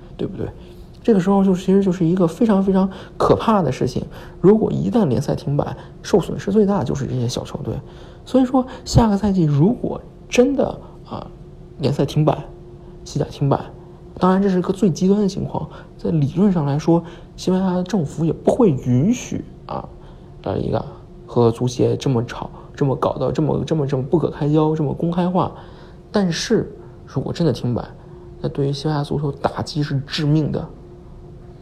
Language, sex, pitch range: Chinese, male, 135-180 Hz